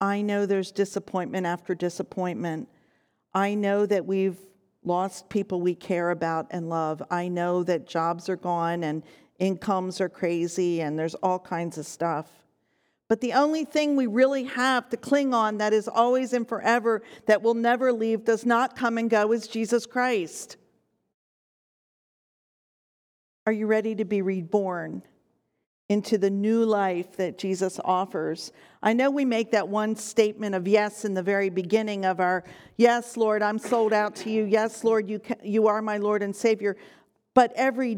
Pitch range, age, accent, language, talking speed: 185-230 Hz, 50-69, American, English, 170 wpm